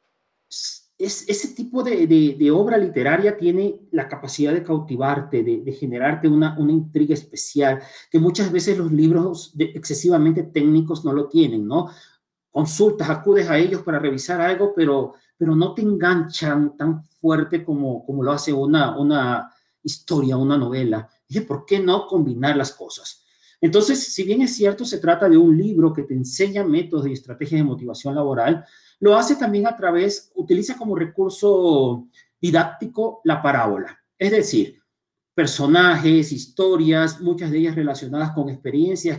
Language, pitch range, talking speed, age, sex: Spanish, 145-200 Hz, 160 wpm, 40-59, male